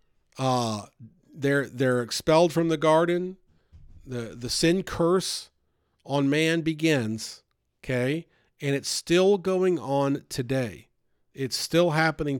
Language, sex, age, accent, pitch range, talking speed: English, male, 50-69, American, 130-190 Hz, 115 wpm